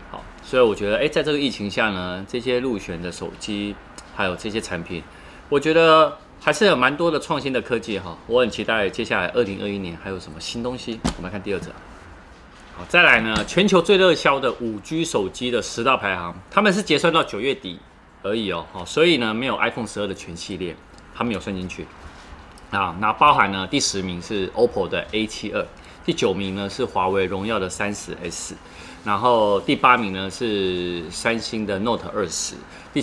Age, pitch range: 20-39, 90-115 Hz